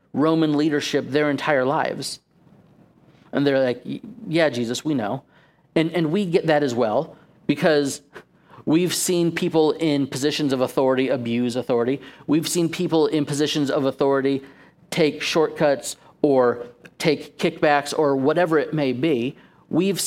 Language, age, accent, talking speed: English, 40-59, American, 140 wpm